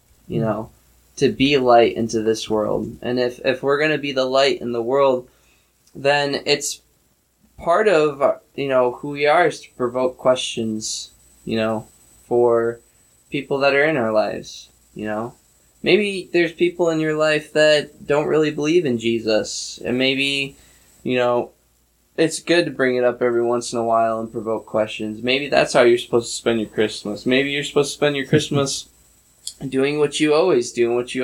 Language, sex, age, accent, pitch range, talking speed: English, male, 10-29, American, 110-135 Hz, 190 wpm